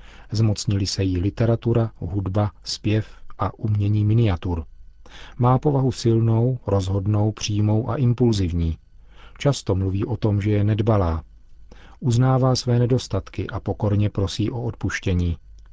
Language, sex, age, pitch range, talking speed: Czech, male, 40-59, 95-115 Hz, 120 wpm